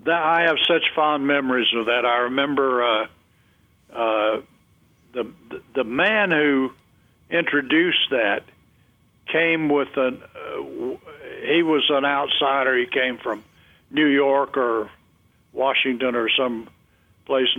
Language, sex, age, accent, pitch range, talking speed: English, male, 60-79, American, 130-155 Hz, 120 wpm